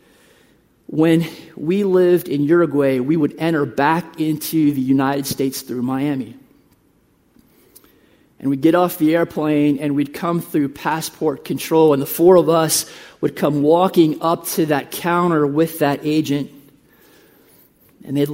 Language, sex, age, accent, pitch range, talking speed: English, male, 40-59, American, 145-170 Hz, 145 wpm